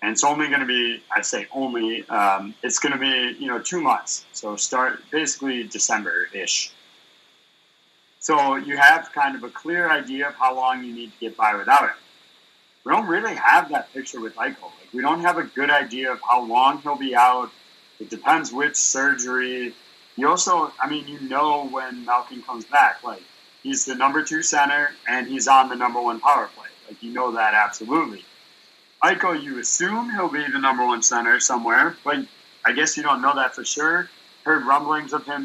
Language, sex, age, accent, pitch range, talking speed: English, male, 30-49, American, 125-155 Hz, 200 wpm